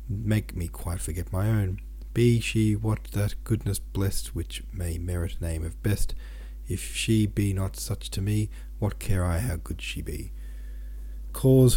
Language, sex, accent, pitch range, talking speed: English, male, Australian, 75-105 Hz, 170 wpm